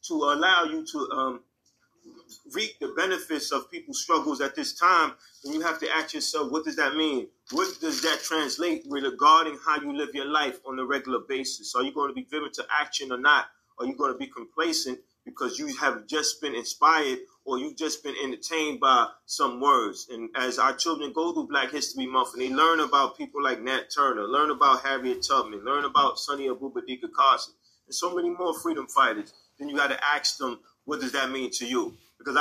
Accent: American